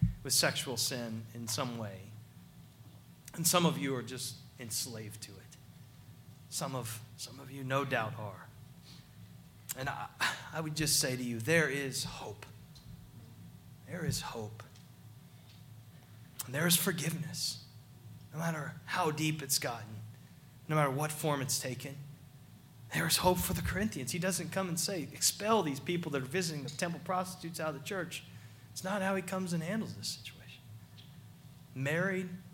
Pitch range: 125-165 Hz